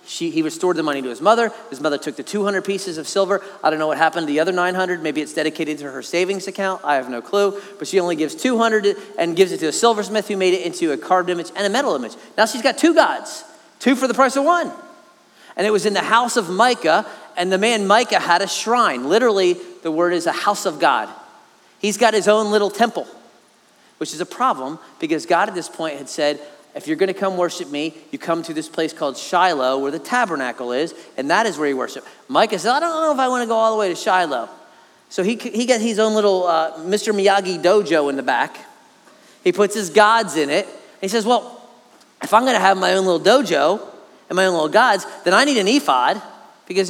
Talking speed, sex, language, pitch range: 240 wpm, male, English, 165-220 Hz